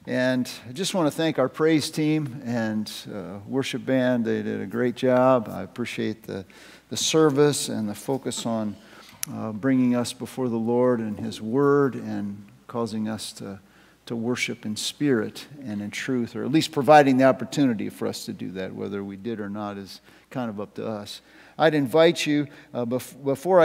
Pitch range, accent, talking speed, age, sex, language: 130-160 Hz, American, 190 wpm, 50-69, male, English